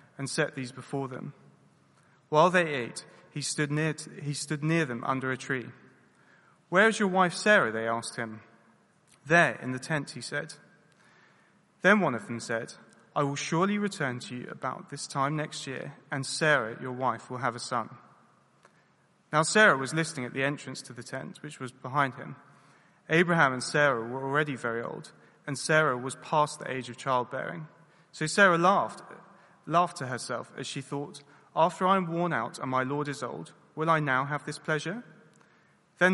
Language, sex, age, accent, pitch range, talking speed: English, male, 30-49, British, 130-165 Hz, 185 wpm